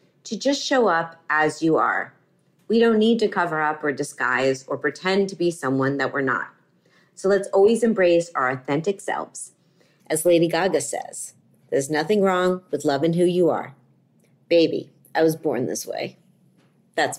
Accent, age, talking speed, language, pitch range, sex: American, 40-59, 170 wpm, English, 160-225 Hz, female